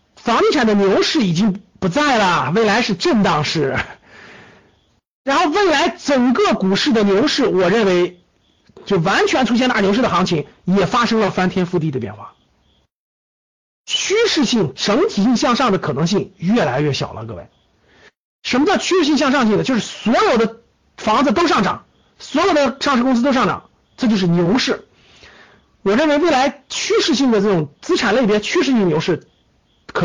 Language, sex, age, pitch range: Chinese, male, 50-69, 190-275 Hz